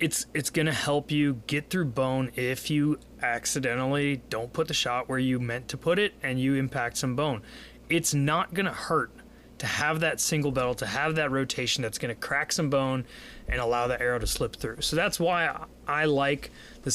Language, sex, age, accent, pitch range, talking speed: English, male, 20-39, American, 120-155 Hz, 215 wpm